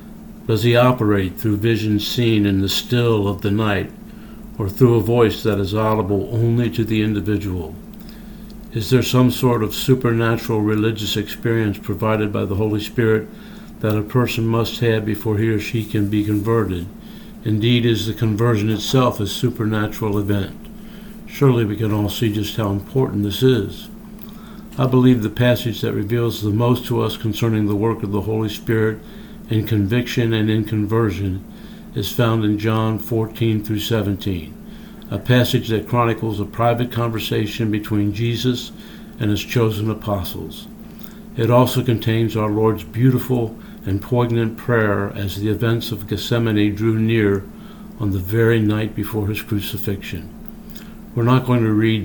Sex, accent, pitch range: male, American, 105-120 Hz